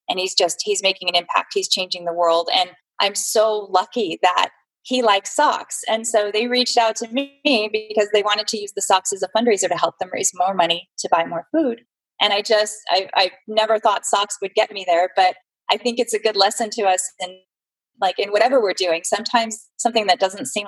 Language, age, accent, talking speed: English, 20-39, American, 225 wpm